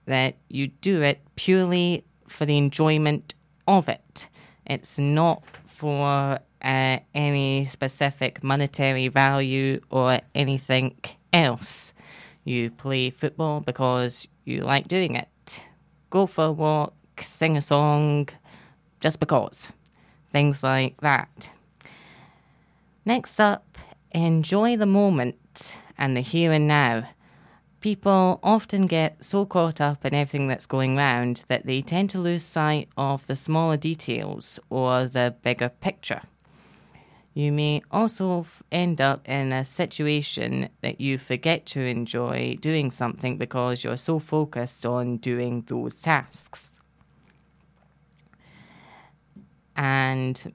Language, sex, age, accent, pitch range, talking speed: English, female, 20-39, British, 130-165 Hz, 120 wpm